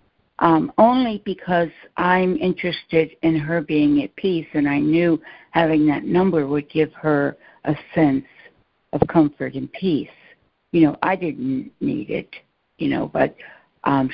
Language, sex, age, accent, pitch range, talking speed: English, female, 60-79, American, 145-170 Hz, 150 wpm